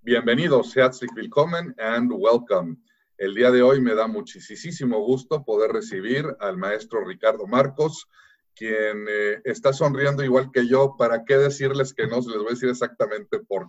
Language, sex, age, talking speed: English, male, 40-59, 160 wpm